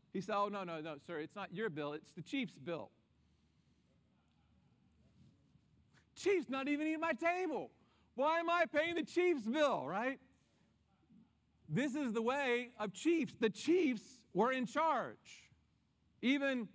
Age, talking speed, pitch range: 40-59, 145 wpm, 170-225 Hz